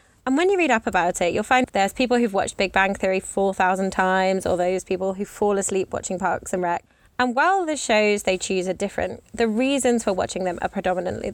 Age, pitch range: 20-39, 185-245 Hz